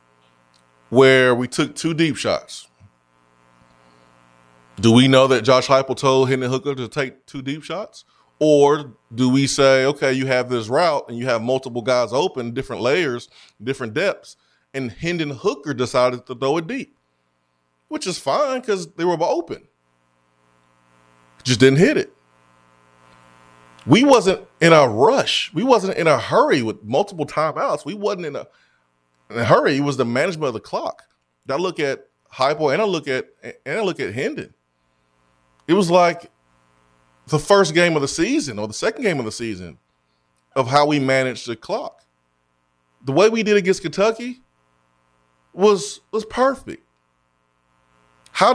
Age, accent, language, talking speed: 30-49, American, English, 160 wpm